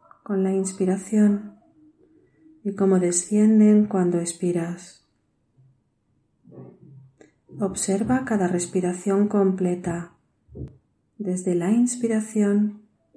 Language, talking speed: Spanish, 70 wpm